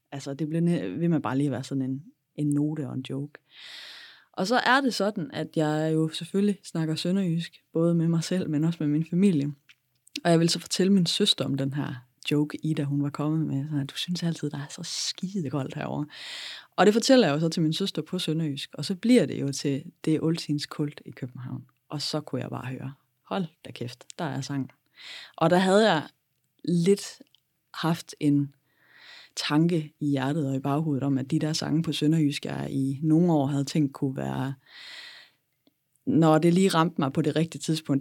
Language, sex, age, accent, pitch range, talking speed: Danish, female, 20-39, native, 140-165 Hz, 205 wpm